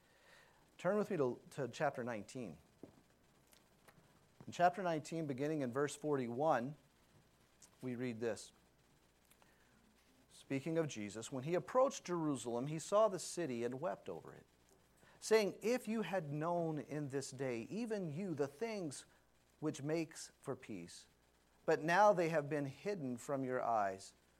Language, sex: English, male